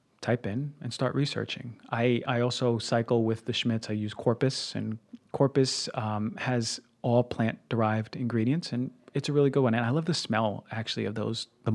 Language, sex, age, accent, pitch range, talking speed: English, male, 30-49, American, 110-135 Hz, 195 wpm